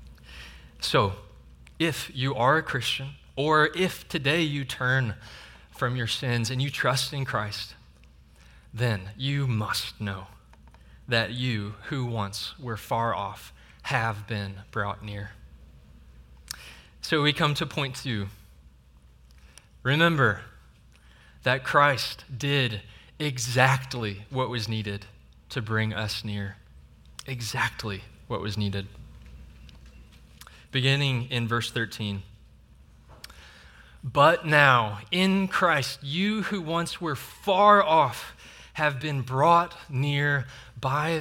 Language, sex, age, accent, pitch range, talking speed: English, male, 20-39, American, 100-145 Hz, 110 wpm